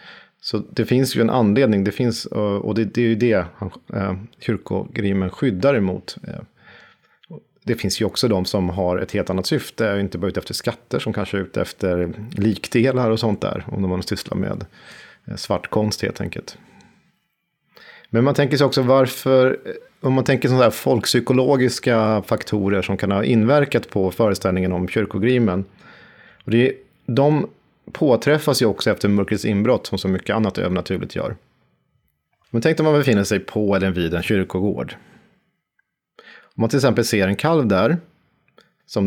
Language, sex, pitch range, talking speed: Swedish, male, 95-120 Hz, 170 wpm